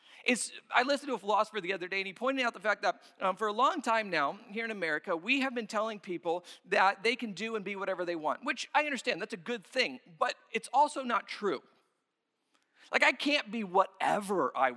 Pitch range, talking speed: 205-250 Hz, 230 wpm